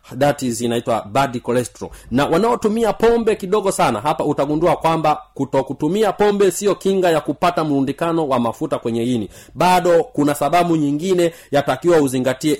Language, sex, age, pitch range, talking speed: Swahili, male, 40-59, 125-170 Hz, 145 wpm